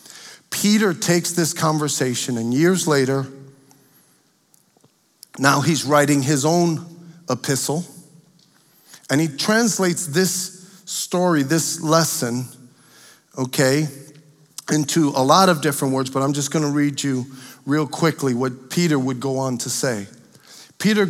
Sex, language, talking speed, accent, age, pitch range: male, English, 125 wpm, American, 50-69, 145-195 Hz